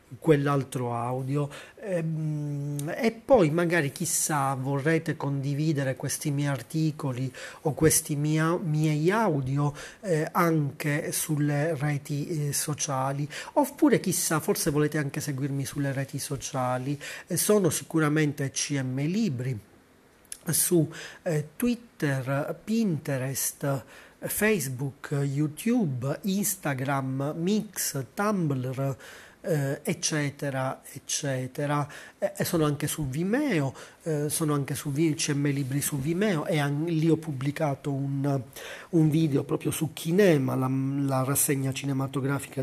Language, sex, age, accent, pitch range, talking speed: Italian, male, 30-49, native, 135-160 Hz, 105 wpm